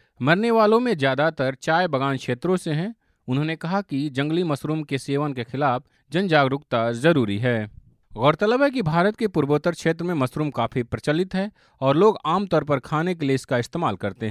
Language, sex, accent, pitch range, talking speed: Hindi, male, native, 125-165 Hz, 185 wpm